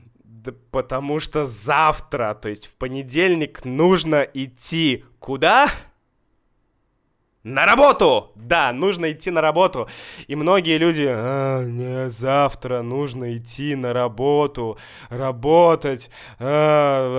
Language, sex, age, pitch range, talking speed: Russian, male, 20-39, 135-195 Hz, 100 wpm